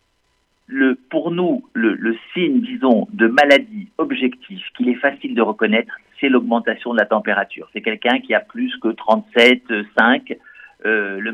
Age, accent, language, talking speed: 50-69, French, French, 160 wpm